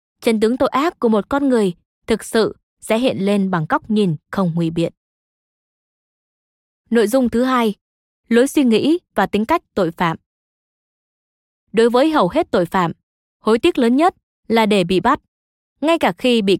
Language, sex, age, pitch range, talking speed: Vietnamese, female, 20-39, 185-260 Hz, 175 wpm